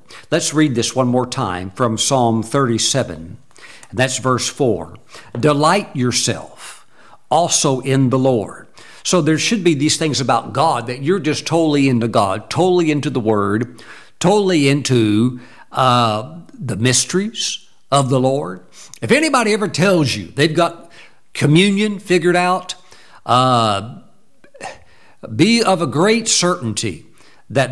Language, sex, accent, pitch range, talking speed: English, male, American, 125-175 Hz, 130 wpm